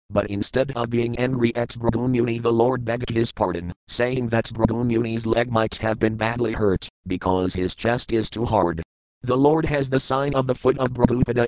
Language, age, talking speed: English, 40-59, 195 wpm